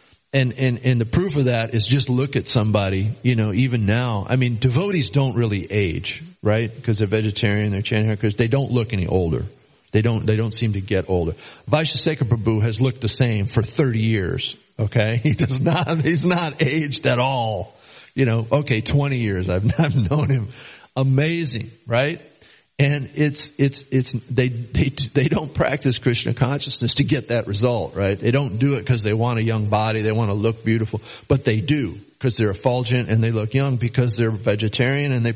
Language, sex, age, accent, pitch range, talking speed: English, male, 40-59, American, 110-135 Hz, 200 wpm